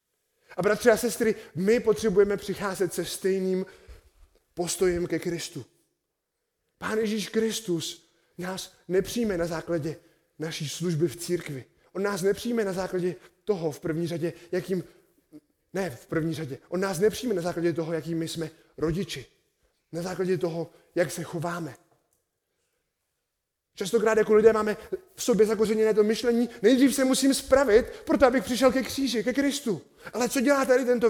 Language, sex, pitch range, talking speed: Czech, male, 175-230 Hz, 150 wpm